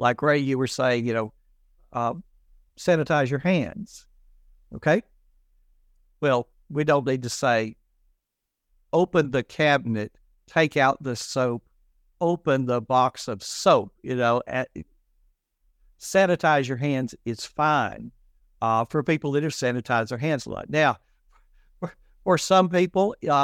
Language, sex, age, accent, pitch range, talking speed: English, male, 60-79, American, 125-165 Hz, 135 wpm